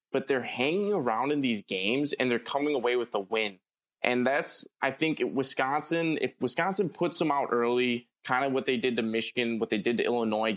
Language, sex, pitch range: English, male, 115-140 Hz